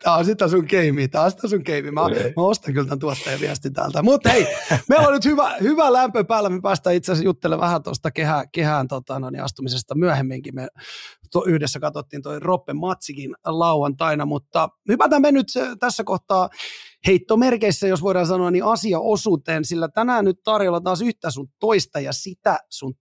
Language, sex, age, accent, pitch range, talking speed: Finnish, male, 30-49, native, 155-215 Hz, 185 wpm